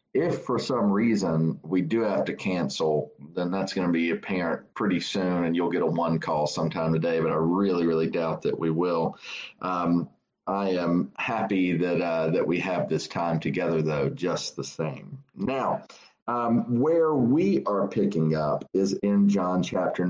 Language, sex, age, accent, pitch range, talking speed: English, male, 40-59, American, 90-115 Hz, 180 wpm